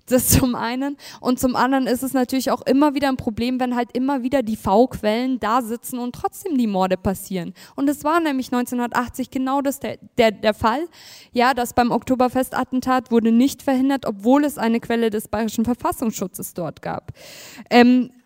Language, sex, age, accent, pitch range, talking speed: German, female, 20-39, German, 225-275 Hz, 180 wpm